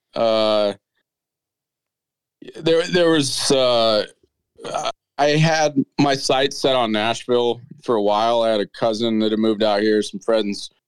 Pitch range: 105-135 Hz